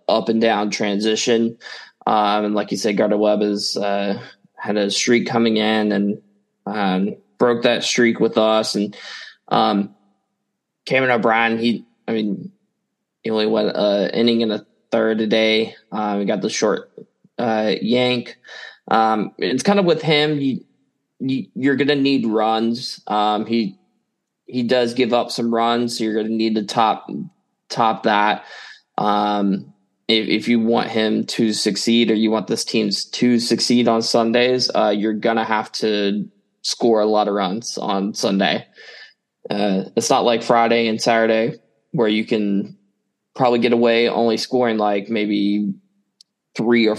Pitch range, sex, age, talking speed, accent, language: 105-120 Hz, male, 20-39, 165 wpm, American, English